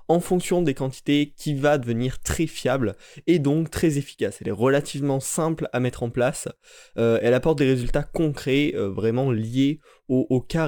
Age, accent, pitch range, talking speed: 20-39, French, 115-140 Hz, 185 wpm